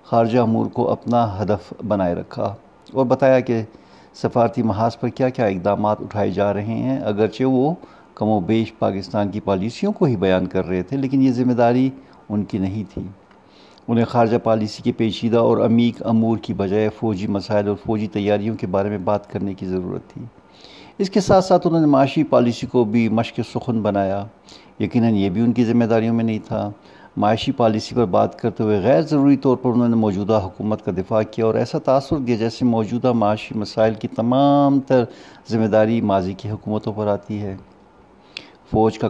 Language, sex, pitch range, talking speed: Urdu, male, 100-120 Hz, 195 wpm